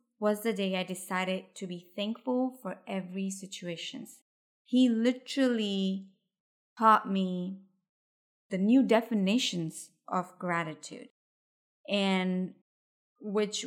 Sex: female